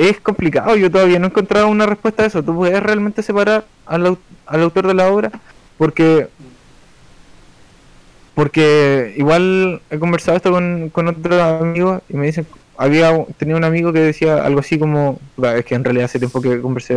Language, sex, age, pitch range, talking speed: Spanish, male, 20-39, 135-170 Hz, 180 wpm